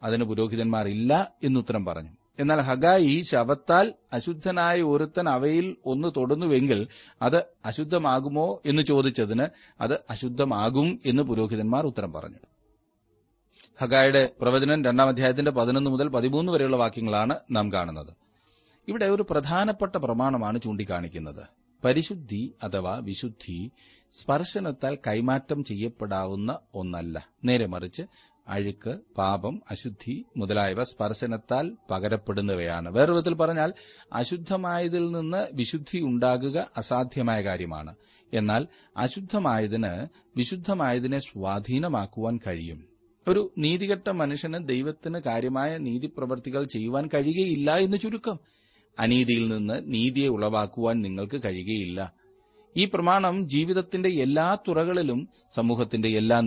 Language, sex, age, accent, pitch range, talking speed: Malayalam, male, 30-49, native, 110-155 Hz, 95 wpm